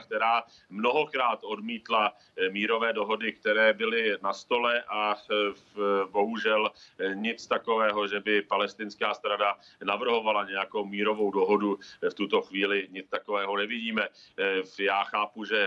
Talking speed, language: 115 wpm, Czech